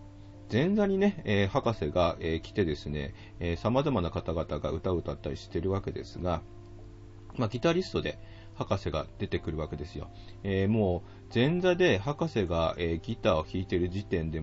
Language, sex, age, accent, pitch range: Japanese, male, 40-59, native, 85-110 Hz